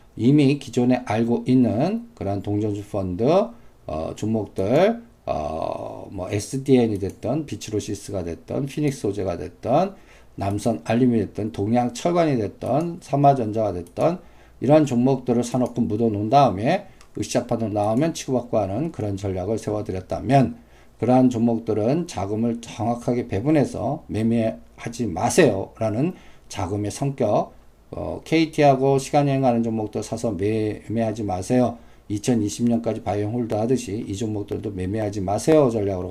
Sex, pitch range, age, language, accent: male, 100-135 Hz, 50-69, Korean, native